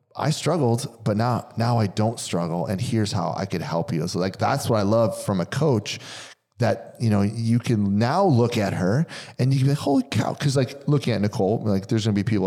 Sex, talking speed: male, 245 wpm